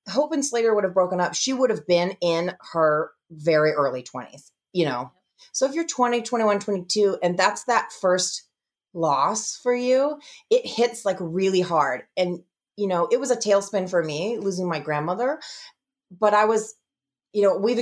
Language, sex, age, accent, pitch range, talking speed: English, female, 30-49, American, 165-210 Hz, 180 wpm